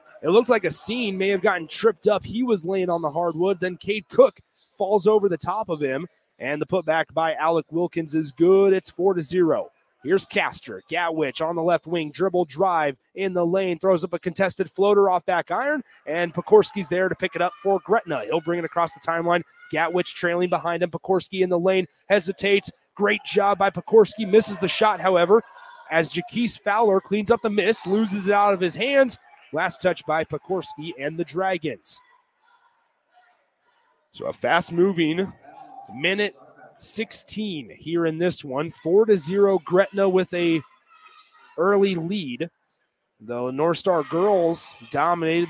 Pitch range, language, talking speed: 165-205 Hz, English, 170 wpm